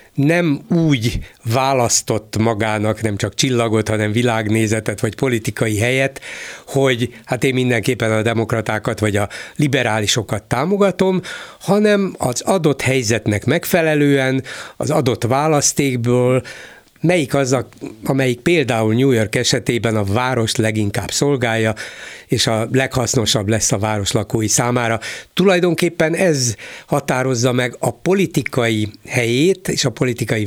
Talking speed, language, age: 115 wpm, Hungarian, 60-79